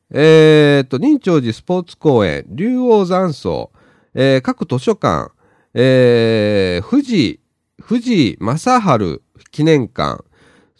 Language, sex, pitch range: Japanese, male, 120-195 Hz